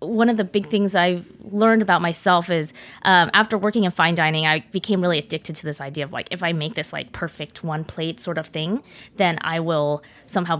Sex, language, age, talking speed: female, English, 20-39, 225 wpm